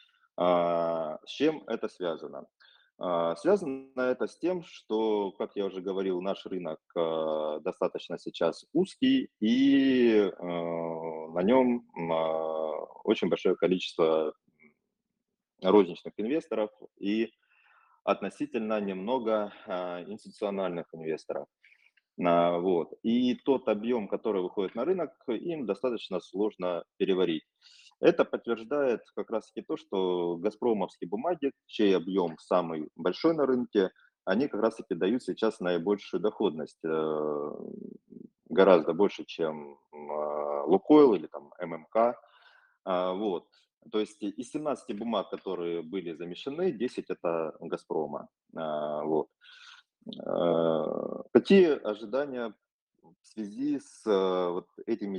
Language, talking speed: Russian, 100 wpm